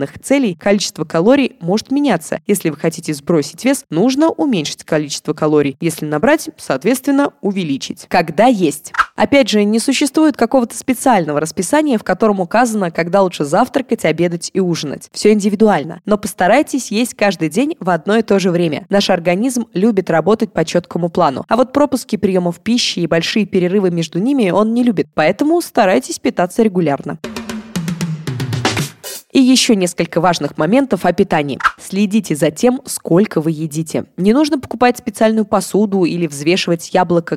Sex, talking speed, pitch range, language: female, 150 wpm, 170-235 Hz, Russian